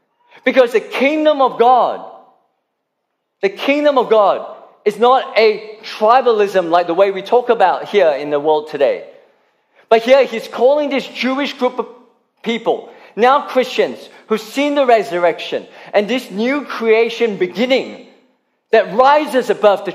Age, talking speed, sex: 40-59, 145 wpm, male